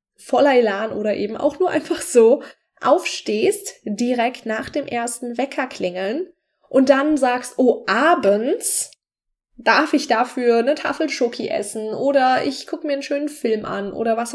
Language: German